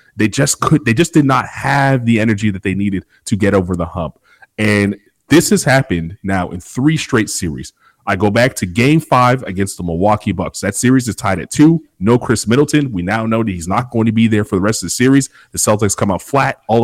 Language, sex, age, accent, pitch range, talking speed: English, male, 30-49, American, 100-130 Hz, 240 wpm